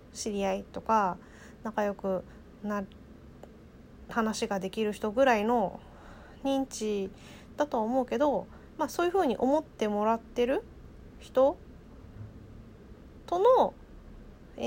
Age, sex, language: 20-39, female, Japanese